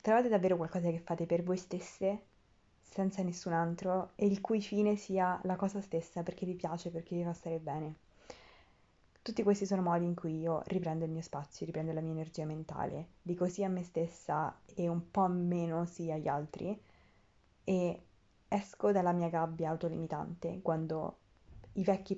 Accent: native